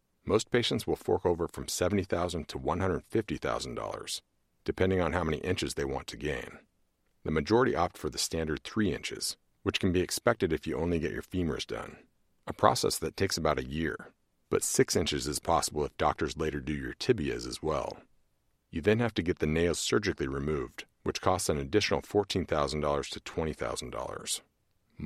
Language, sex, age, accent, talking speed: English, male, 40-59, American, 175 wpm